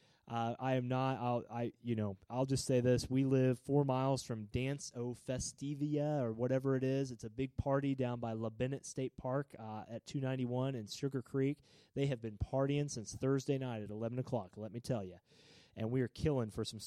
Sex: male